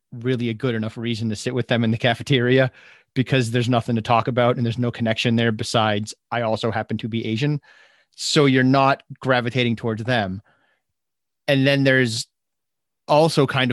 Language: English